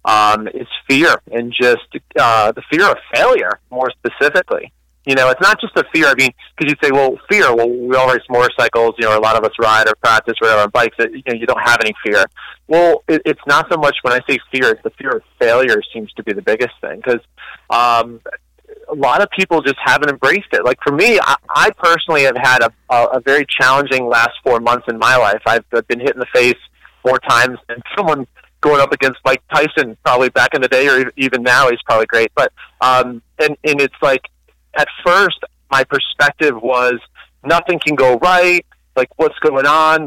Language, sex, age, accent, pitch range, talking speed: English, male, 30-49, American, 120-155 Hz, 220 wpm